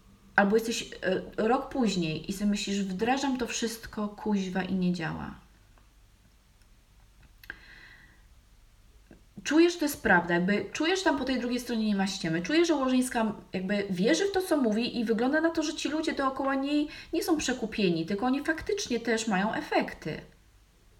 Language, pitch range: Polish, 180-230 Hz